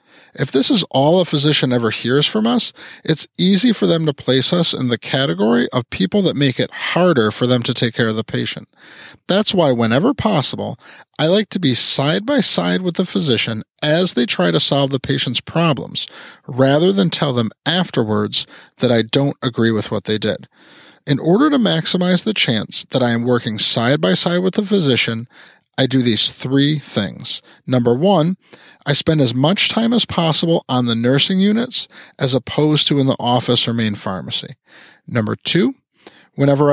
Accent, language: American, English